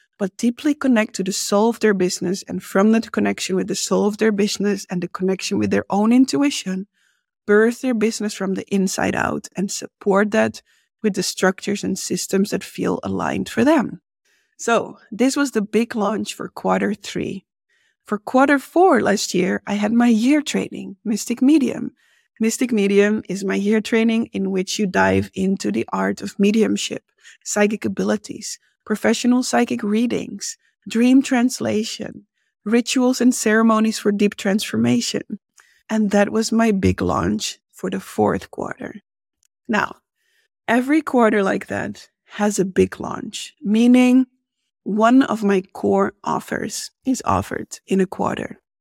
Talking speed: 155 wpm